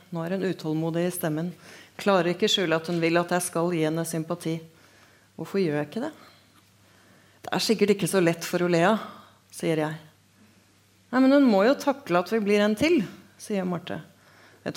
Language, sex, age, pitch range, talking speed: English, female, 30-49, 160-205 Hz, 185 wpm